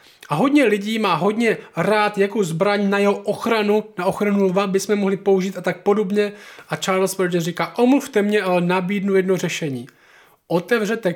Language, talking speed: Czech, 165 wpm